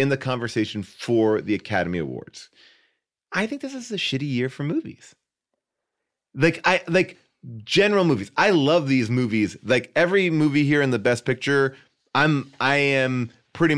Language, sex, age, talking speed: English, male, 30-49, 165 wpm